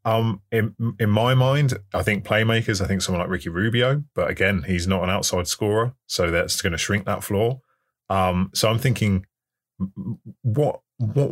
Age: 20-39